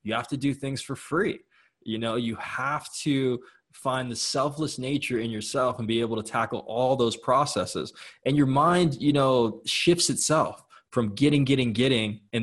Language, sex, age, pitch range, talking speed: English, male, 20-39, 110-140 Hz, 185 wpm